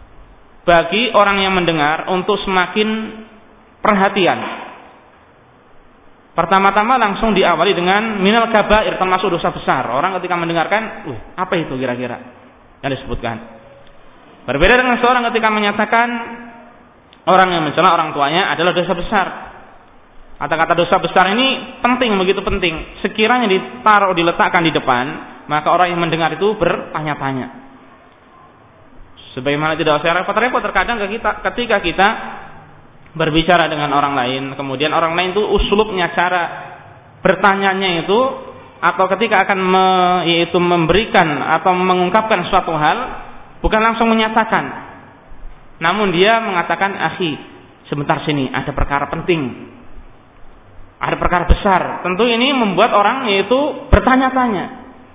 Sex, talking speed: male, 120 wpm